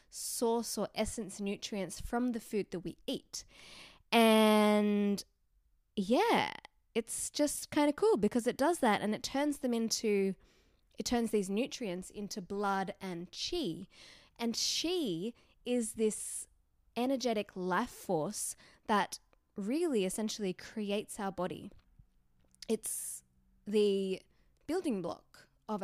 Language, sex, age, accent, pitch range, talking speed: English, female, 10-29, Australian, 185-240 Hz, 120 wpm